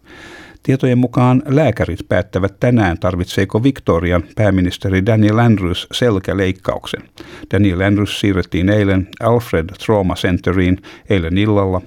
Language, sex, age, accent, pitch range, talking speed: Finnish, male, 50-69, native, 85-105 Hz, 100 wpm